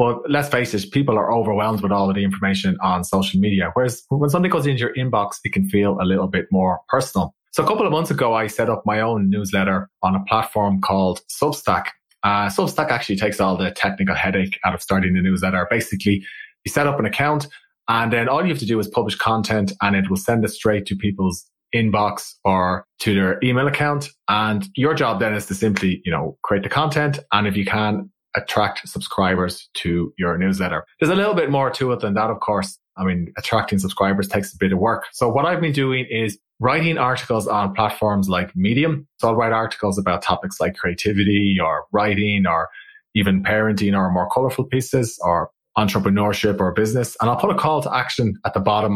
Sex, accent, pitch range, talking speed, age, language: male, Irish, 95-120 Hz, 215 wpm, 20-39, English